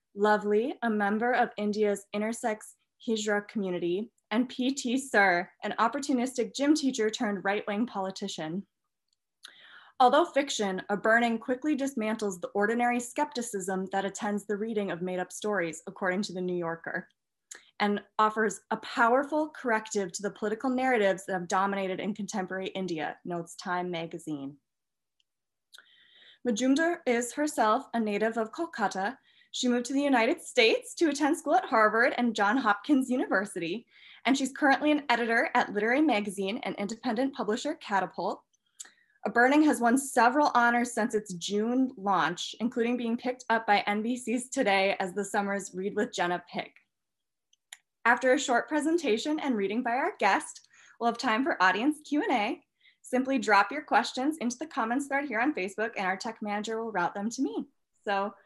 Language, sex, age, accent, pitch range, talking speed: English, female, 20-39, American, 200-255 Hz, 155 wpm